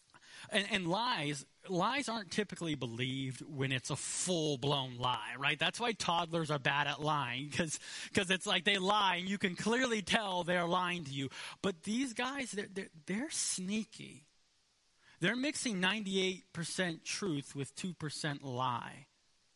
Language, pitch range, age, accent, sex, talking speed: English, 140-190 Hz, 30-49, American, male, 145 wpm